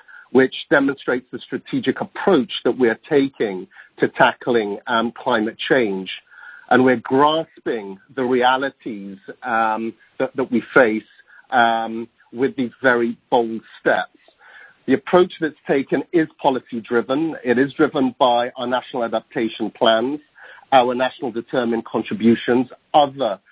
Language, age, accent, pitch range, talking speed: English, 50-69, British, 115-140 Hz, 125 wpm